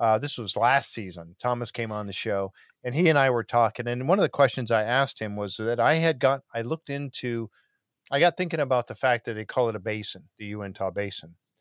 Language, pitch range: English, 105-135 Hz